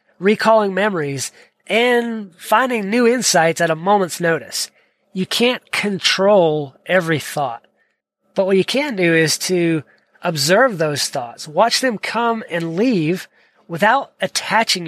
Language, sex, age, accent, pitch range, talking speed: English, male, 30-49, American, 165-220 Hz, 130 wpm